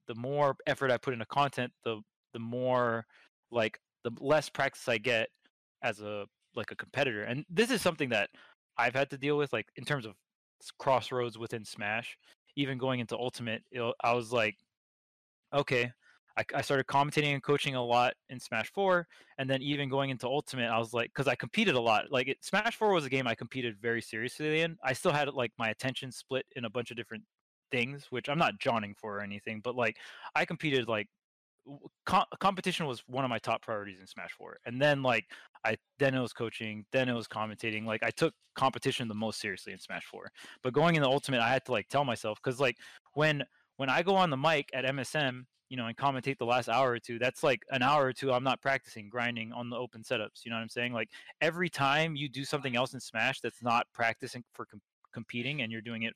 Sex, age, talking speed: male, 20-39, 225 wpm